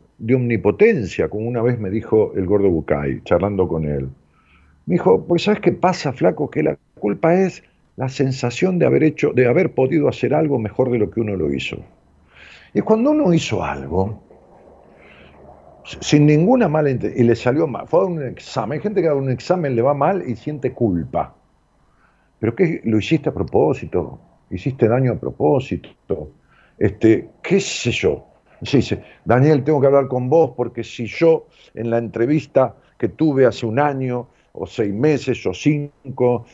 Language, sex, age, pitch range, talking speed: Spanish, male, 50-69, 110-155 Hz, 175 wpm